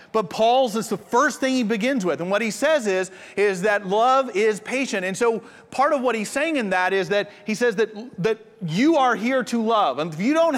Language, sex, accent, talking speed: English, male, American, 245 wpm